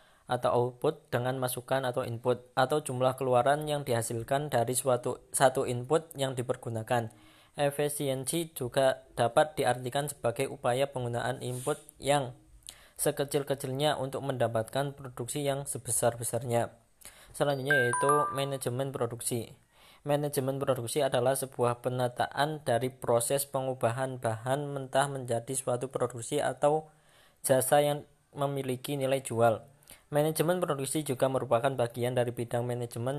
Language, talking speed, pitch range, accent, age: Indonesian, 115 wpm, 120-140 Hz, native, 20-39